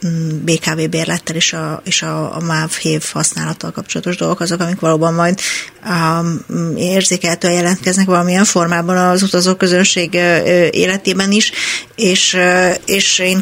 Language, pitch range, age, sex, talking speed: Hungarian, 165-185 Hz, 30-49, female, 120 wpm